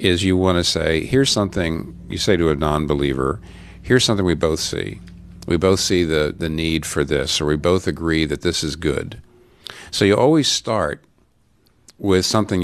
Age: 50-69